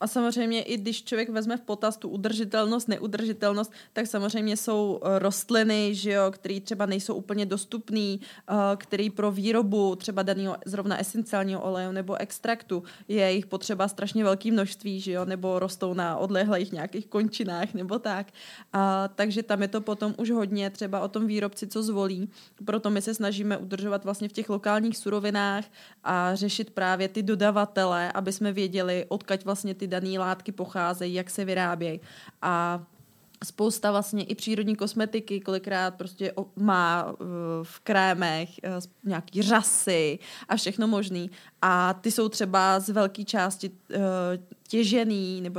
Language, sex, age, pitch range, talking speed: Czech, female, 20-39, 190-210 Hz, 145 wpm